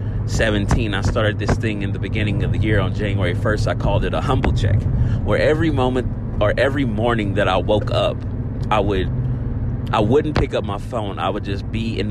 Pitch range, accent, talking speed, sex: 105-115 Hz, American, 215 wpm, male